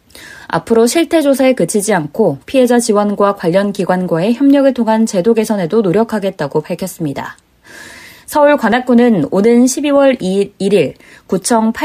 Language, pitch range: Korean, 180-245 Hz